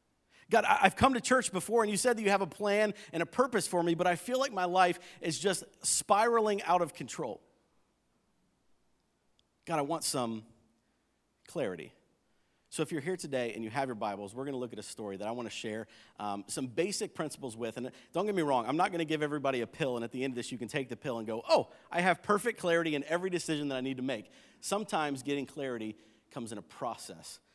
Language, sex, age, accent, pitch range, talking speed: English, male, 40-59, American, 115-170 Hz, 235 wpm